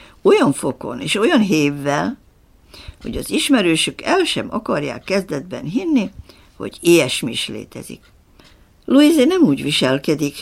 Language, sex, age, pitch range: Hungarian, female, 60-79, 140-200 Hz